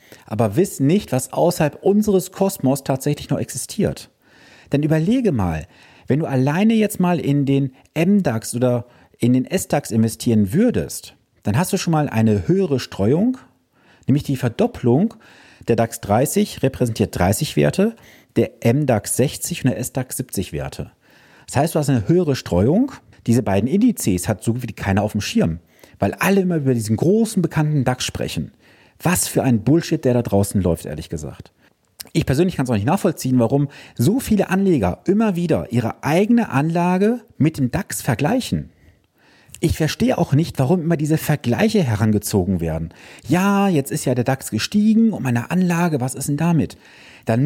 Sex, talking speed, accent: male, 170 wpm, German